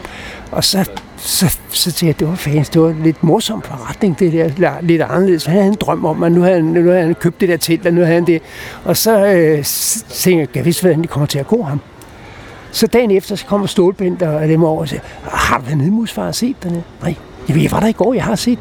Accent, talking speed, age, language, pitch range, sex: native, 275 wpm, 60-79, Danish, 155-200 Hz, male